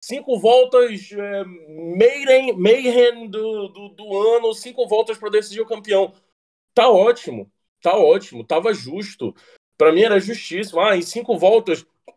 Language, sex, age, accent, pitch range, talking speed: Portuguese, male, 20-39, Brazilian, 185-265 Hz, 140 wpm